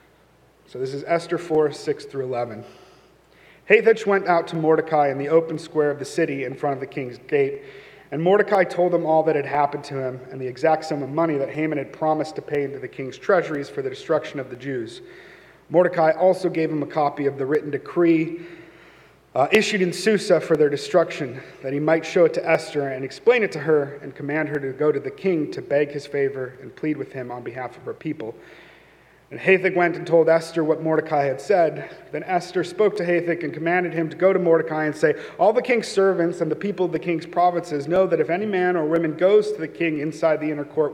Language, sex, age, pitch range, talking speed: English, male, 40-59, 145-180 Hz, 230 wpm